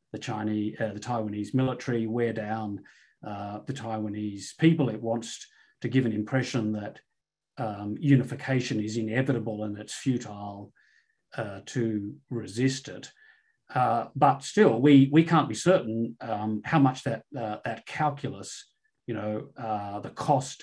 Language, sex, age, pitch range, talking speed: English, male, 40-59, 110-135 Hz, 145 wpm